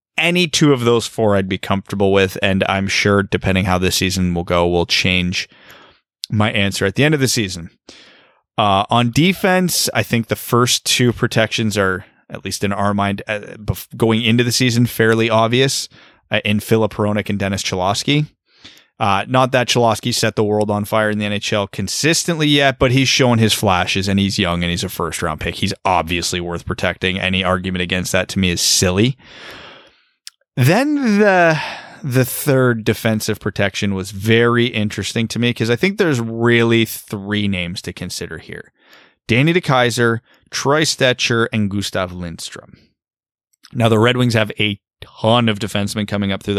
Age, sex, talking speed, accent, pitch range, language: 20-39, male, 175 wpm, American, 100-120 Hz, English